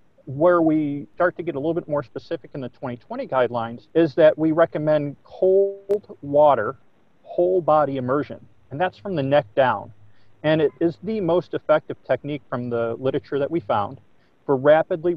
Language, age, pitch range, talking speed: English, 40-59, 125-160 Hz, 175 wpm